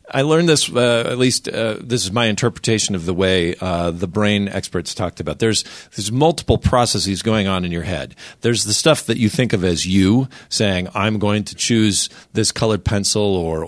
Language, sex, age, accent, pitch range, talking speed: English, male, 40-59, American, 90-120 Hz, 205 wpm